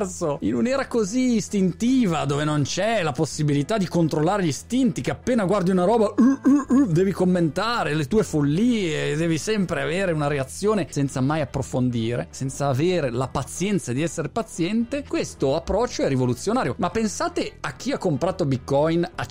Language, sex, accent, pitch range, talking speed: Italian, male, native, 130-190 Hz, 165 wpm